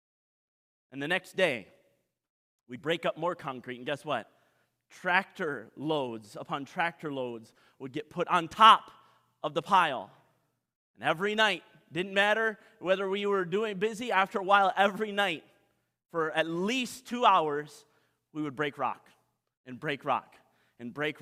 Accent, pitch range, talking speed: American, 150-205 Hz, 155 wpm